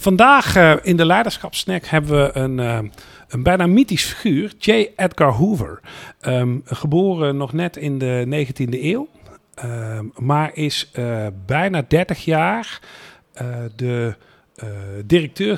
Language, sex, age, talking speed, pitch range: Dutch, male, 50-69, 125 wpm, 125-170 Hz